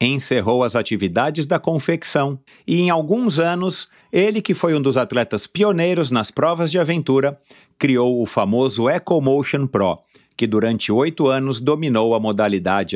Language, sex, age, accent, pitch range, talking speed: Portuguese, male, 50-69, Brazilian, 120-165 Hz, 150 wpm